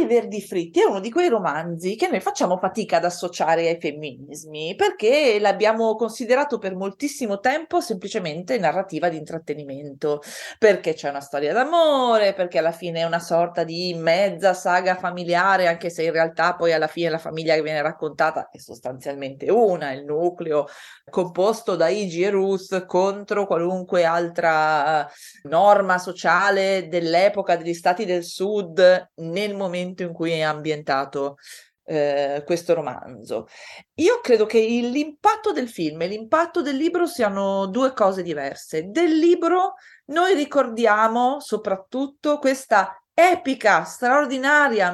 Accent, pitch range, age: native, 165-255 Hz, 30-49